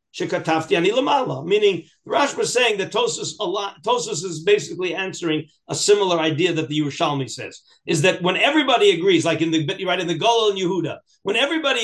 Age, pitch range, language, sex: 50-69, 160-235 Hz, English, male